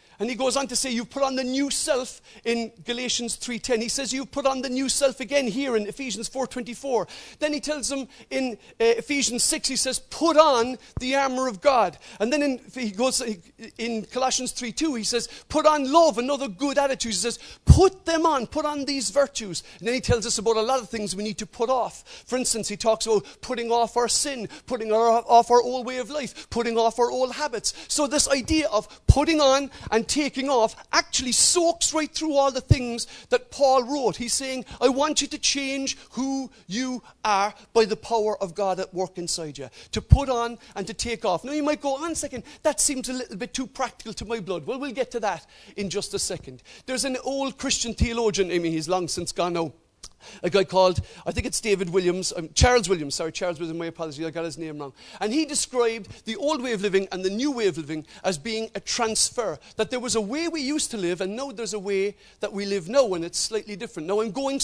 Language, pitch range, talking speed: English, 210-270 Hz, 235 wpm